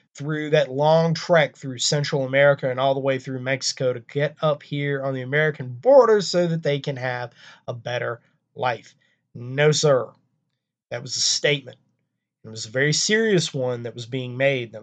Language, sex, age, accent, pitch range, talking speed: English, male, 20-39, American, 130-165 Hz, 185 wpm